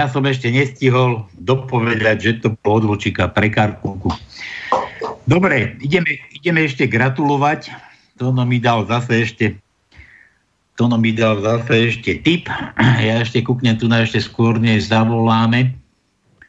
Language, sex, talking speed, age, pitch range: Slovak, male, 110 wpm, 60-79, 110-145 Hz